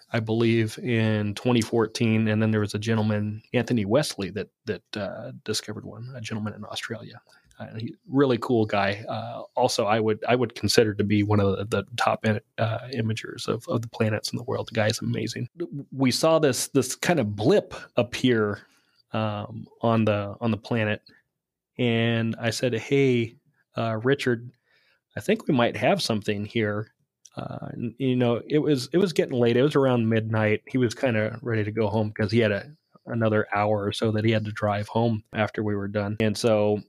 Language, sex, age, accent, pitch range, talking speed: English, male, 30-49, American, 105-125 Hz, 200 wpm